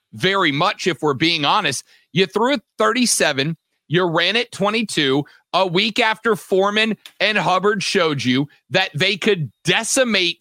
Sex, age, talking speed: male, 40-59, 145 wpm